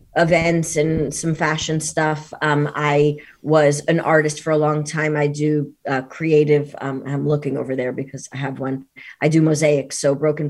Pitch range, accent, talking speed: 145-170 Hz, American, 185 wpm